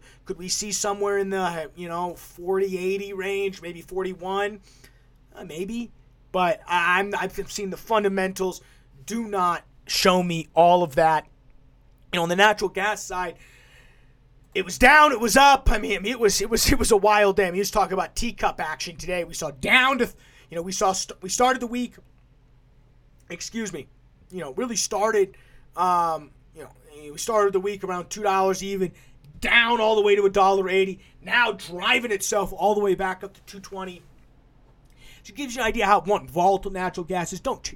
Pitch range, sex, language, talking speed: 160-205 Hz, male, English, 200 wpm